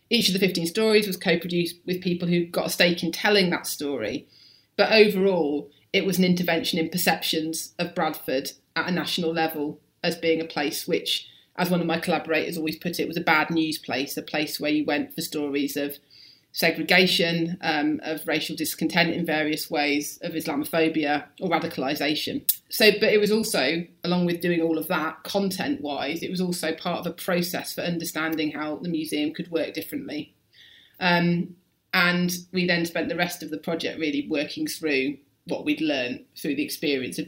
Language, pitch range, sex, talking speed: English, 160-185 Hz, female, 185 wpm